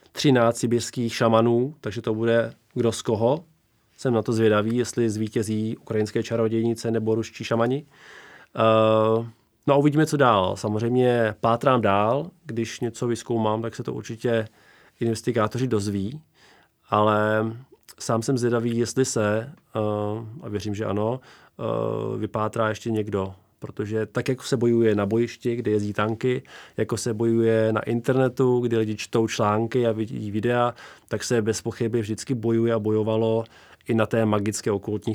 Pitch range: 105-120 Hz